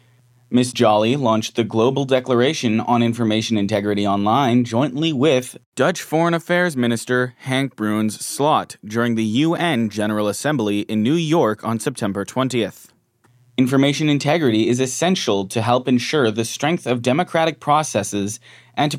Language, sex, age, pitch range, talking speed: English, male, 20-39, 115-145 Hz, 140 wpm